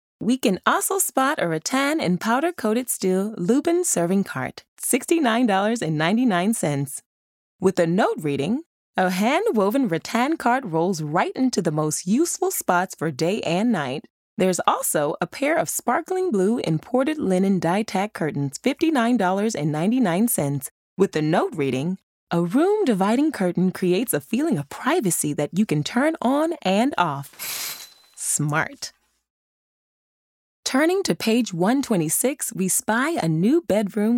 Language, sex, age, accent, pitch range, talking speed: English, female, 20-39, American, 165-255 Hz, 130 wpm